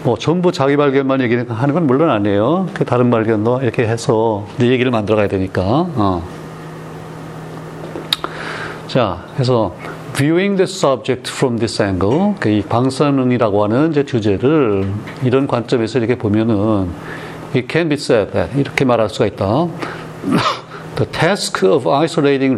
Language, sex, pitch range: Korean, male, 115-155 Hz